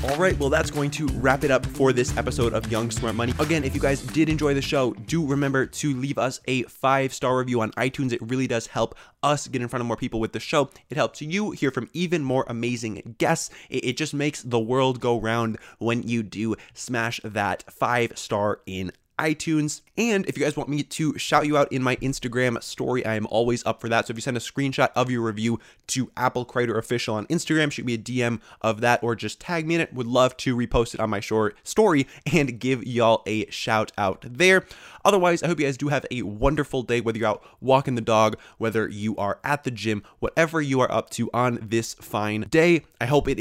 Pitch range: 115-140 Hz